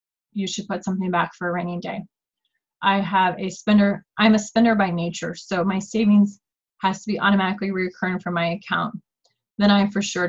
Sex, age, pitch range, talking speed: female, 20-39, 180-210 Hz, 190 wpm